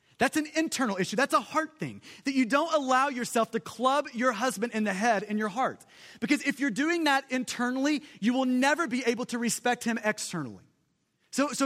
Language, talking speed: English, 205 wpm